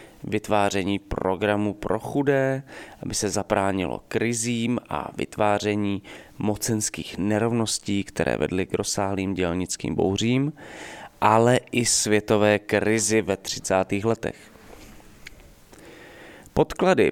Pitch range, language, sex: 105-130 Hz, English, male